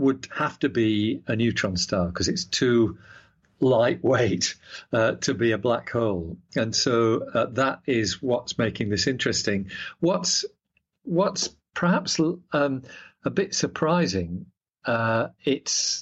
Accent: British